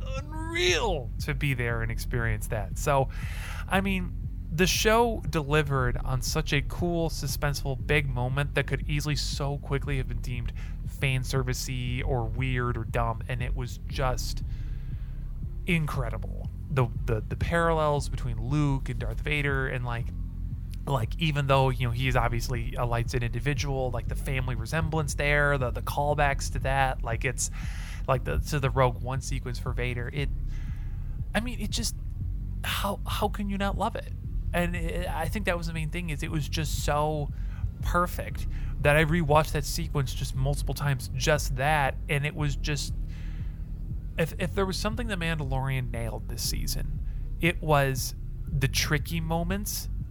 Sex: male